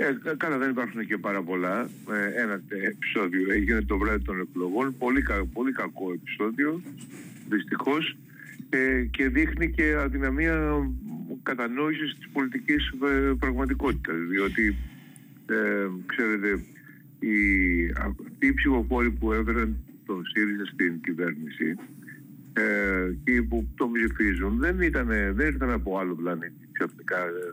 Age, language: 50-69, Greek